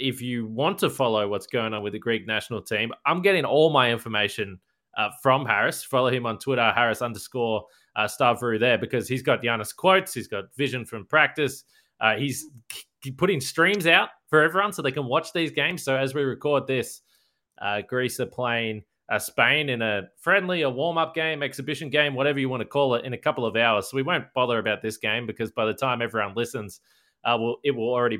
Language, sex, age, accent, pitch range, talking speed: English, male, 20-39, Australian, 110-145 Hz, 220 wpm